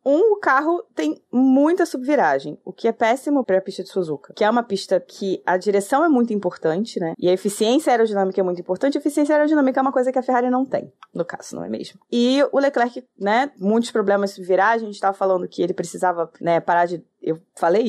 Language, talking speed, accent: Portuguese, 230 wpm, Brazilian